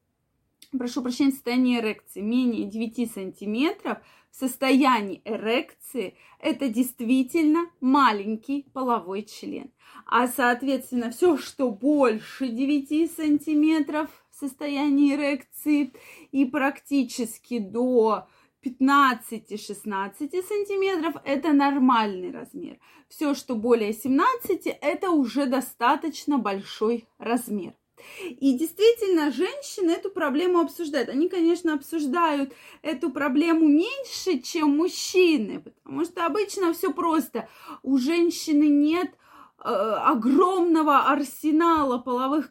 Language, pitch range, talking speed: Russian, 245-320 Hz, 95 wpm